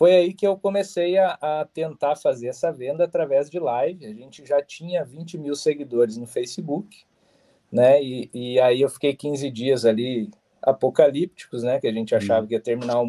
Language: Portuguese